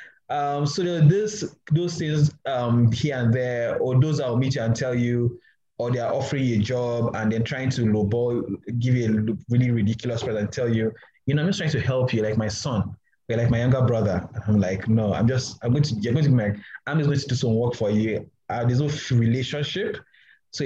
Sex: male